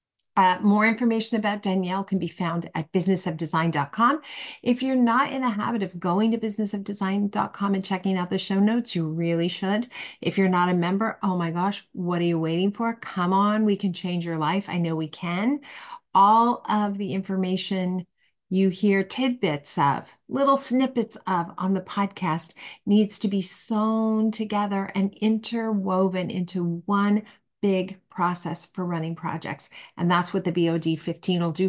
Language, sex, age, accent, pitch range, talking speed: English, female, 40-59, American, 175-215 Hz, 170 wpm